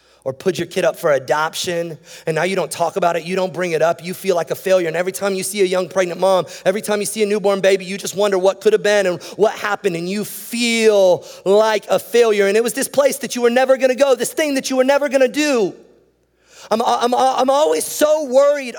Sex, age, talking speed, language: male, 30-49, 255 wpm, English